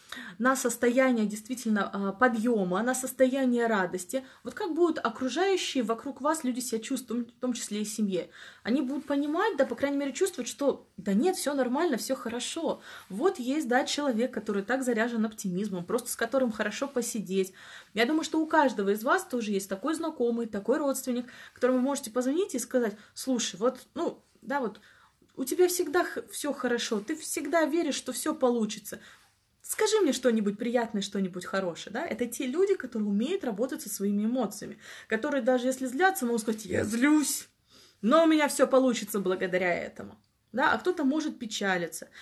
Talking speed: 170 wpm